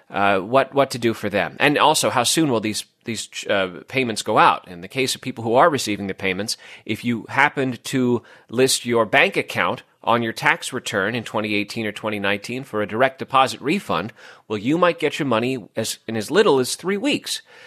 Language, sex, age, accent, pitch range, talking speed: English, male, 30-49, American, 110-135 Hz, 210 wpm